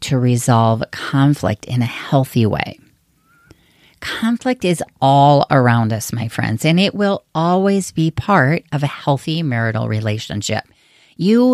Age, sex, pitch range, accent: 40-59, female, 130-185 Hz, American